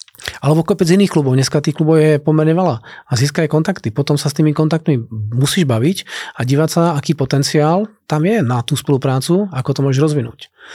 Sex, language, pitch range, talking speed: male, Czech, 125-155 Hz, 190 wpm